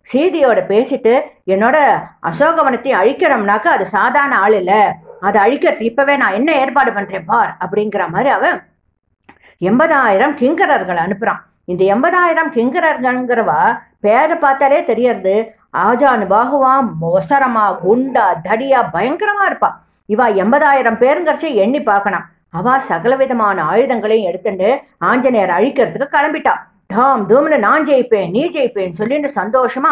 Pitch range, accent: 205-280 Hz, Indian